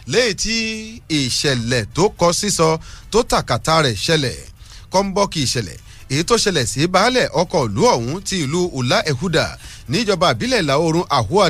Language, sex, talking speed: English, male, 155 wpm